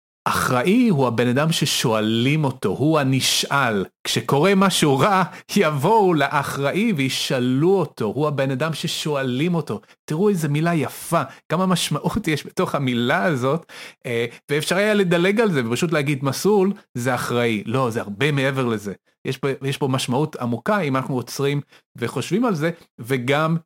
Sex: male